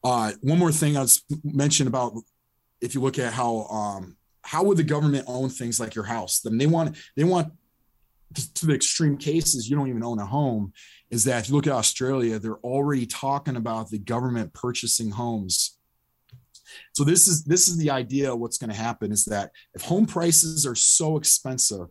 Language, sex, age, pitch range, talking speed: English, male, 30-49, 115-150 Hz, 205 wpm